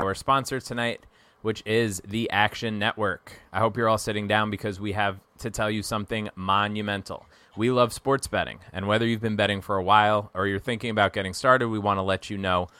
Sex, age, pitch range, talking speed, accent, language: male, 20-39, 95-110 Hz, 215 wpm, American, English